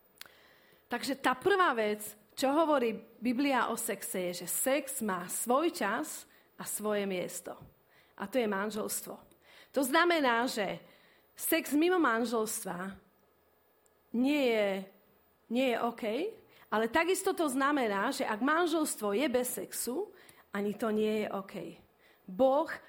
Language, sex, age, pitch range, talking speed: Slovak, female, 40-59, 210-285 Hz, 130 wpm